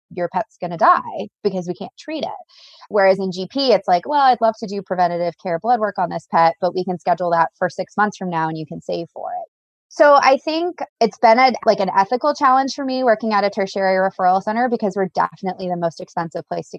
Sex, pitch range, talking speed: female, 175-220 Hz, 245 wpm